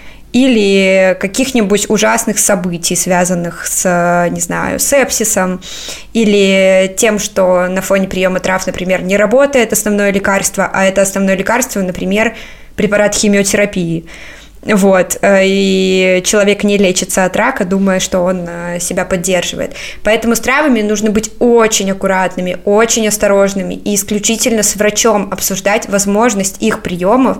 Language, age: Russian, 20-39